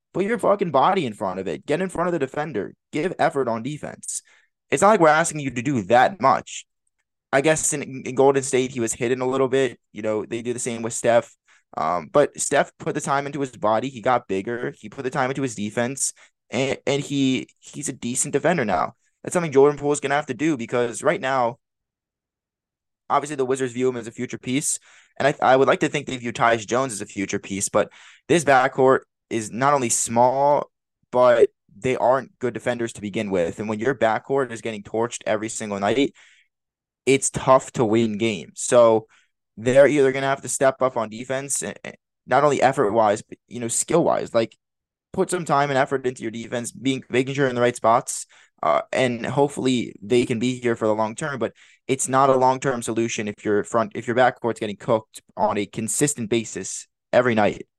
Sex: male